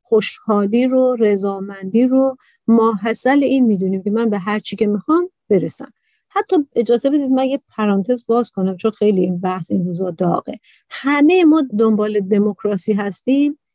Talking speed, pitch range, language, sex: 150 wpm, 210-265 Hz, Persian, female